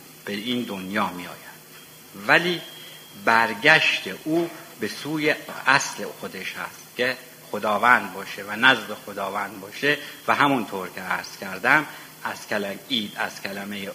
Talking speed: 125 wpm